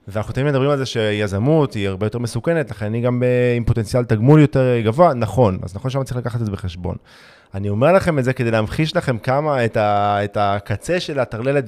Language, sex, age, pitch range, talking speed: Hebrew, male, 20-39, 115-150 Hz, 215 wpm